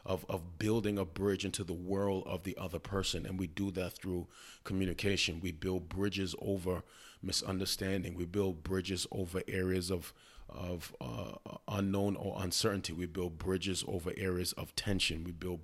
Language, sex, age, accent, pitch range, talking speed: English, male, 30-49, American, 90-100 Hz, 165 wpm